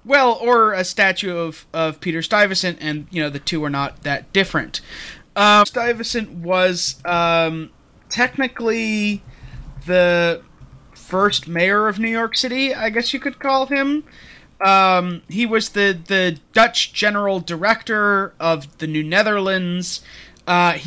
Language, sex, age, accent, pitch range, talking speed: English, male, 30-49, American, 160-205 Hz, 140 wpm